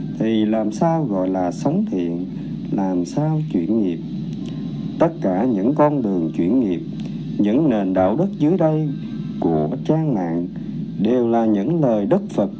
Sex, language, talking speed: male, Vietnamese, 155 wpm